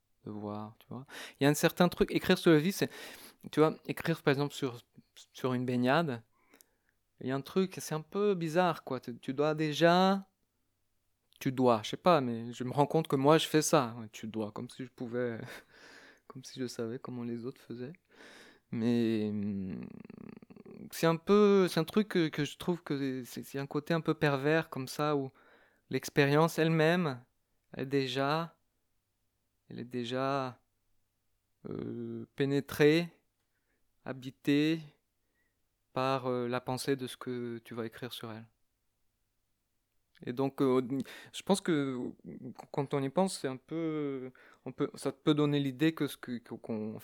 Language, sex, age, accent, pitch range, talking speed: French, male, 20-39, French, 115-155 Hz, 175 wpm